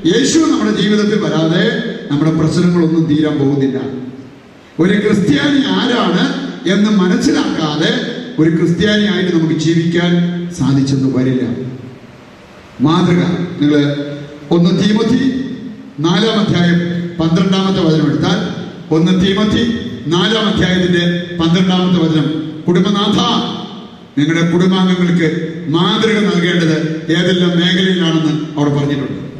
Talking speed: 70 wpm